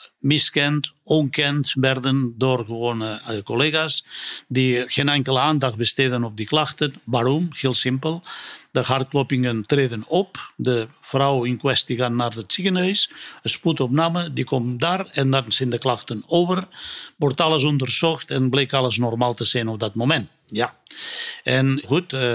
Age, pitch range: 50-69, 125-150 Hz